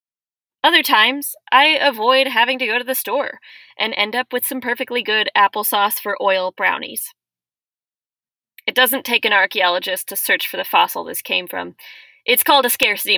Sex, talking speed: female, 175 wpm